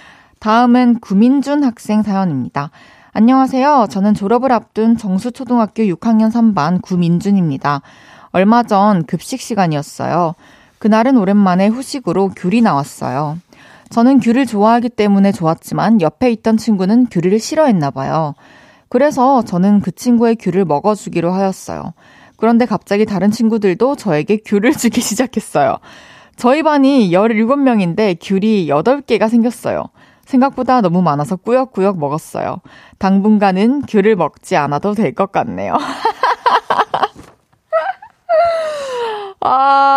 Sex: female